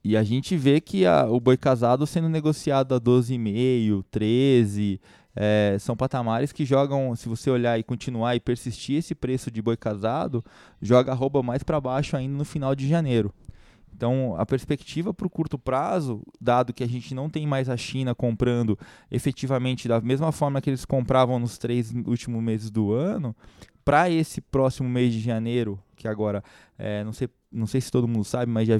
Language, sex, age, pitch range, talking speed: Portuguese, male, 20-39, 115-145 Hz, 190 wpm